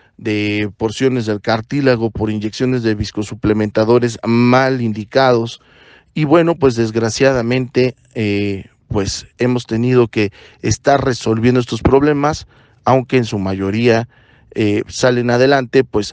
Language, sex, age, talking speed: Spanish, male, 40-59, 115 wpm